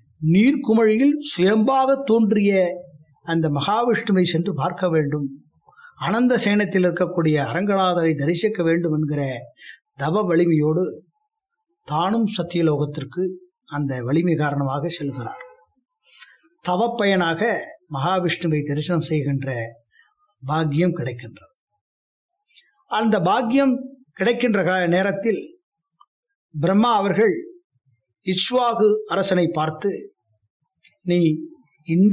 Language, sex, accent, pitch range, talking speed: English, male, Indian, 155-230 Hz, 65 wpm